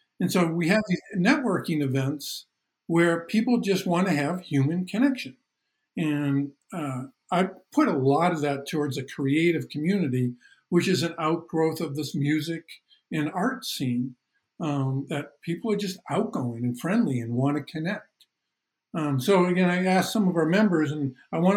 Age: 50-69